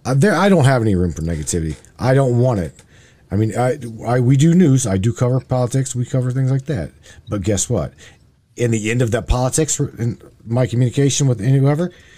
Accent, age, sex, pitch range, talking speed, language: American, 40-59, male, 110-145 Hz, 210 wpm, English